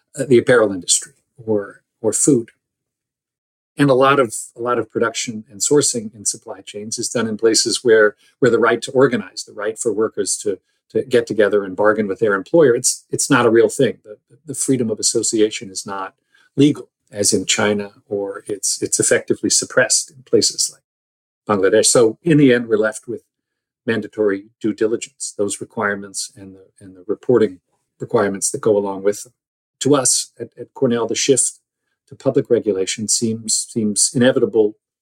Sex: male